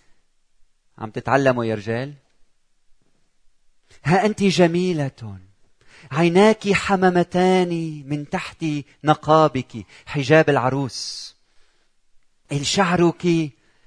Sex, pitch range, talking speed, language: male, 115-150 Hz, 65 wpm, Arabic